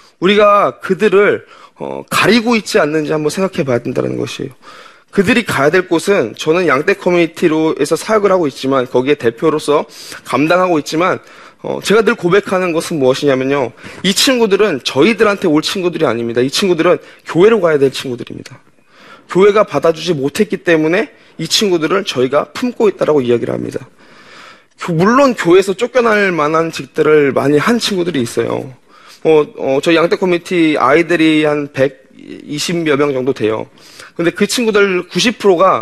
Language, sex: Korean, male